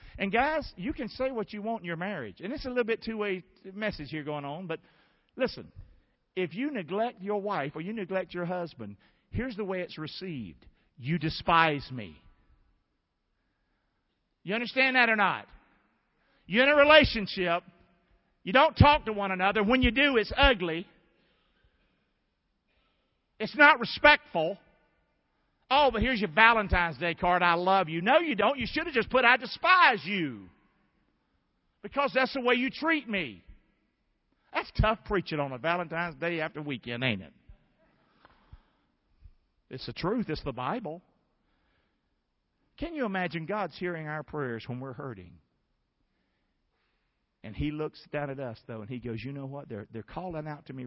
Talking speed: 165 wpm